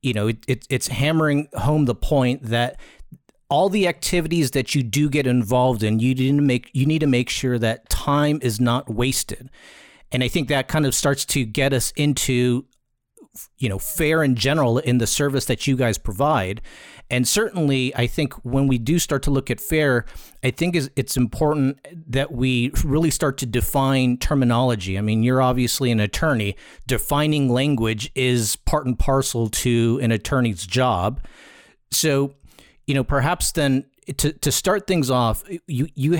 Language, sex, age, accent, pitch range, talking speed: English, male, 40-59, American, 120-150 Hz, 175 wpm